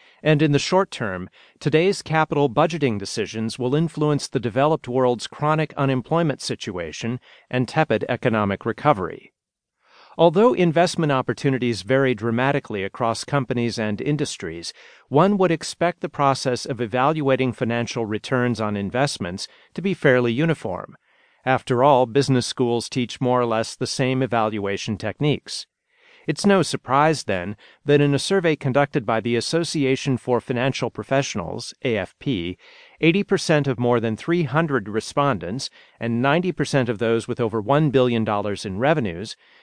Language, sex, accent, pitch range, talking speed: English, male, American, 115-150 Hz, 135 wpm